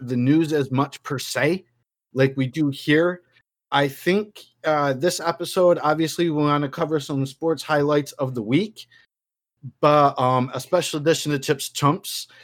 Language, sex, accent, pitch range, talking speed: English, male, American, 130-155 Hz, 165 wpm